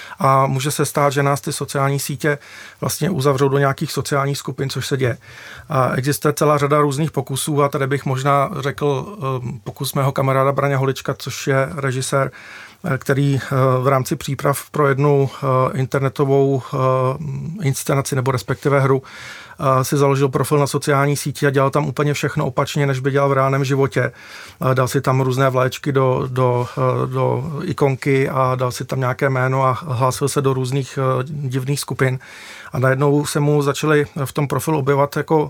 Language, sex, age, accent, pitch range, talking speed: Czech, male, 40-59, native, 135-145 Hz, 165 wpm